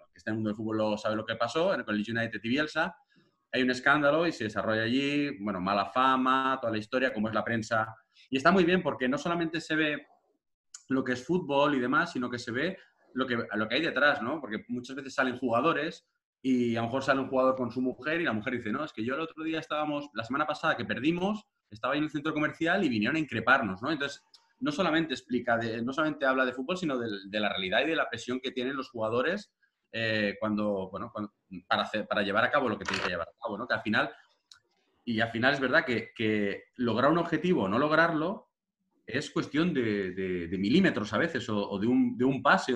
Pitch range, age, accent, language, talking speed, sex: 110-150 Hz, 30-49, Spanish, Spanish, 245 wpm, male